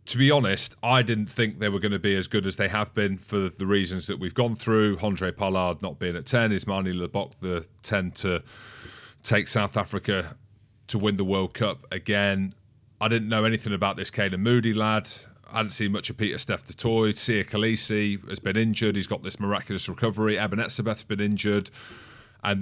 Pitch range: 100-115 Hz